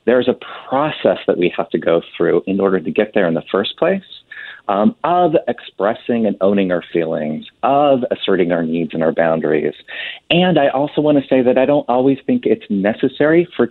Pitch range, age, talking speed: 95-125 Hz, 40-59, 200 wpm